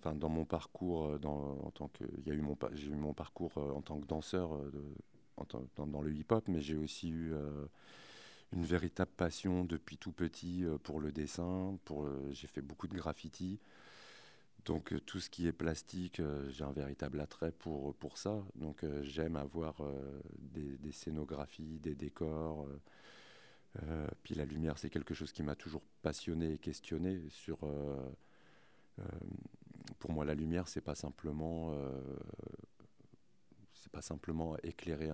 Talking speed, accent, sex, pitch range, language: 170 wpm, French, male, 75-85 Hz, French